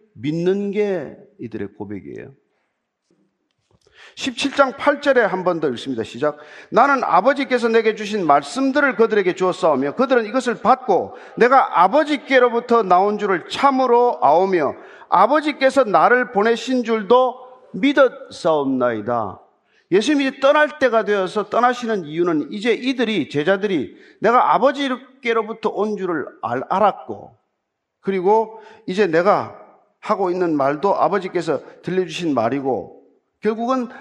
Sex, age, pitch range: male, 40-59, 160-245 Hz